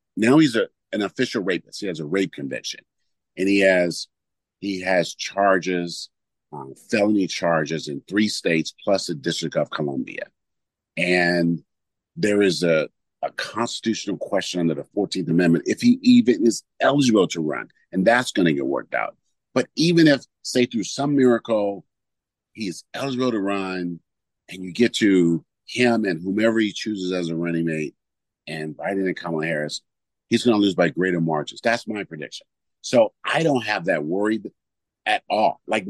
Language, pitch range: English, 85-110 Hz